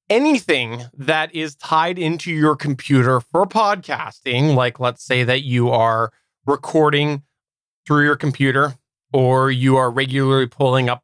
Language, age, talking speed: English, 20-39, 135 wpm